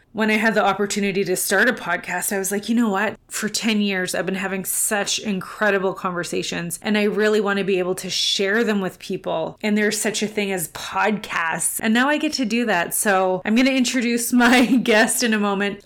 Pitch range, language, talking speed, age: 190-225 Hz, English, 225 wpm, 30-49